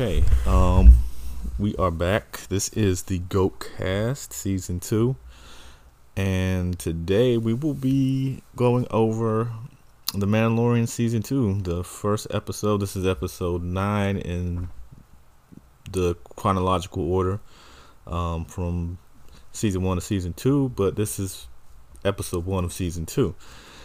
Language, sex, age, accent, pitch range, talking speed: English, male, 20-39, American, 85-105 Hz, 120 wpm